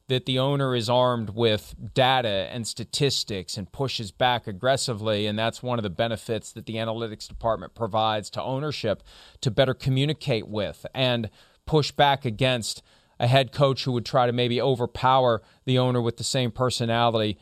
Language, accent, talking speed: English, American, 170 wpm